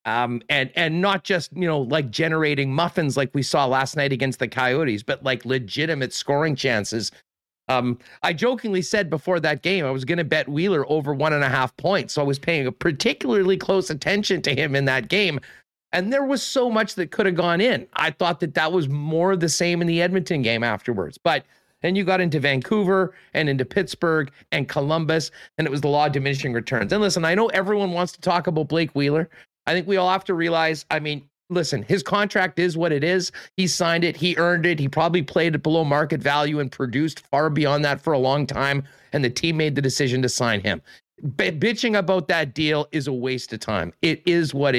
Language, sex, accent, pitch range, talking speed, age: English, male, American, 135-180 Hz, 220 wpm, 40-59